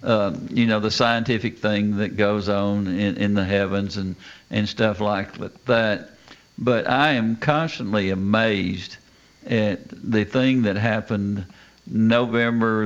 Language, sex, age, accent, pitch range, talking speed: English, male, 60-79, American, 95-115 Hz, 135 wpm